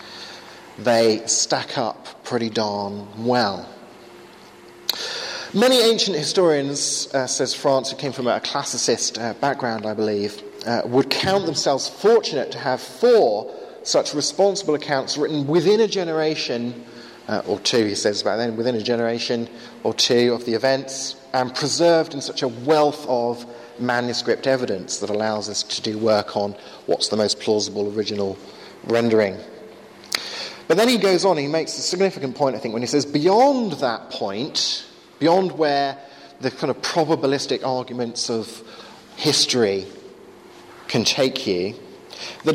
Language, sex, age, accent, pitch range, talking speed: English, male, 40-59, British, 120-180 Hz, 145 wpm